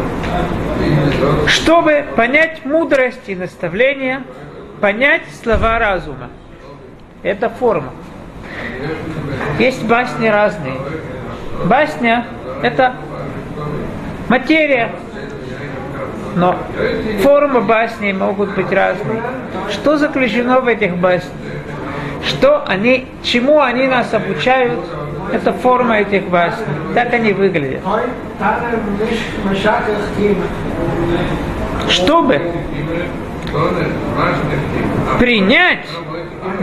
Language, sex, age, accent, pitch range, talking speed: Russian, male, 40-59, native, 180-250 Hz, 65 wpm